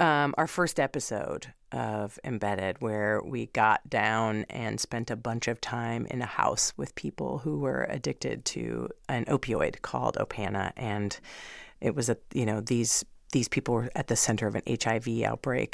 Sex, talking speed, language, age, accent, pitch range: female, 175 wpm, English, 40-59, American, 125-155 Hz